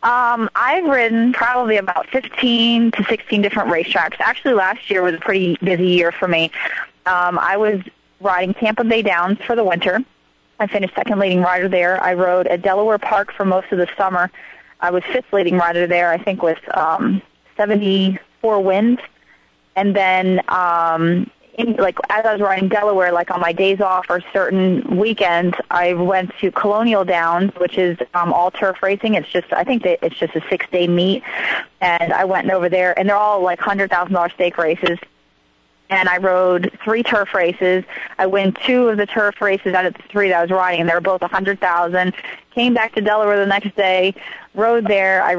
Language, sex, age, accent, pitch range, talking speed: English, female, 20-39, American, 180-210 Hz, 190 wpm